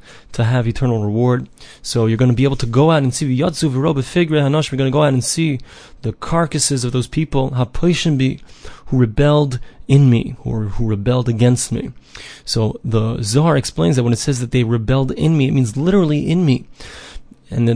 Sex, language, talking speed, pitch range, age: male, English, 195 wpm, 125-150 Hz, 30-49